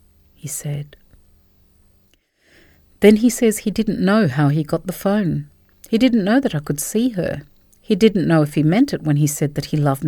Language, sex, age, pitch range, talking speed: English, female, 50-69, 145-195 Hz, 200 wpm